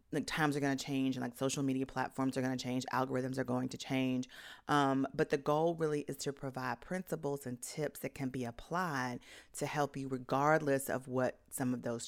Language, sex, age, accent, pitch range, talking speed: English, female, 40-59, American, 130-150 Hz, 220 wpm